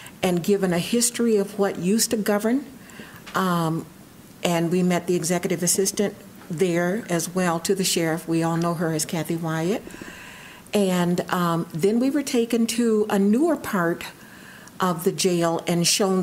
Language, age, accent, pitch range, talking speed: English, 50-69, American, 175-210 Hz, 165 wpm